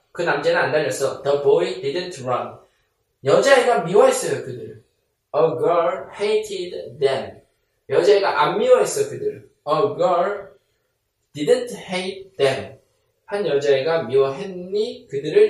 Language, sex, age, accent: Korean, male, 20-39, native